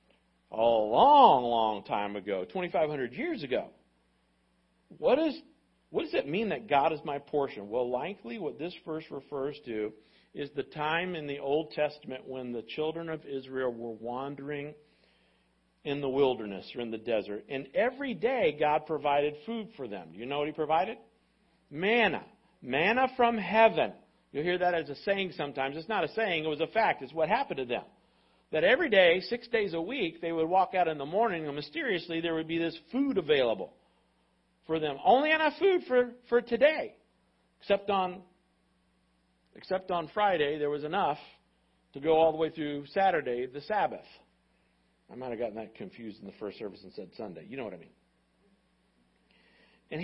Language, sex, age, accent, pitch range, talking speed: English, male, 50-69, American, 130-210 Hz, 180 wpm